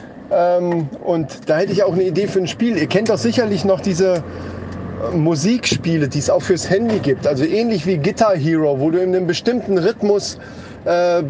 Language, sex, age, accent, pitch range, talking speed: German, male, 40-59, German, 140-190 Hz, 190 wpm